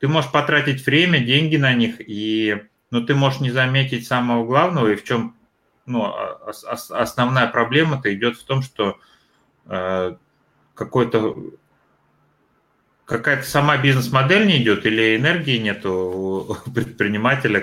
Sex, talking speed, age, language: male, 130 wpm, 30-49, English